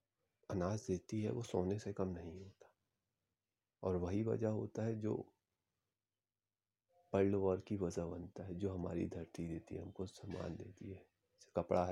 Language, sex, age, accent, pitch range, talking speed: Hindi, male, 30-49, native, 90-105 Hz, 150 wpm